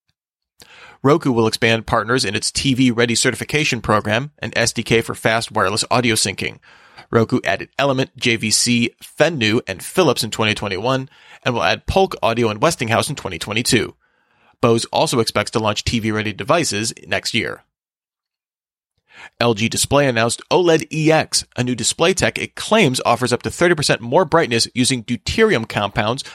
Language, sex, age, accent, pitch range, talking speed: English, male, 30-49, American, 115-140 Hz, 150 wpm